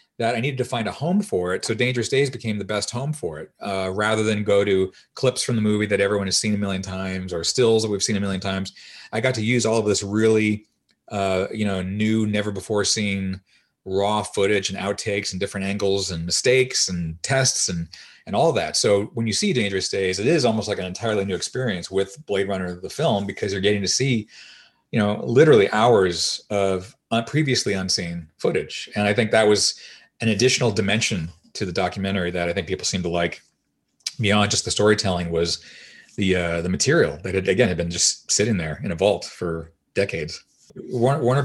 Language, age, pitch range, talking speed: Swedish, 30-49, 95-110 Hz, 210 wpm